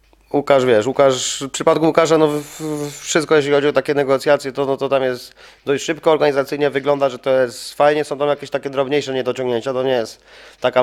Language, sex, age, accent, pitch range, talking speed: Polish, male, 20-39, native, 120-135 Hz, 200 wpm